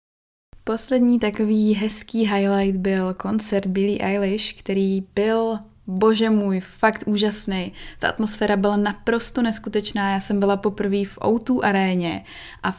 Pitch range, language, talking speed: 190-215 Hz, Czech, 125 wpm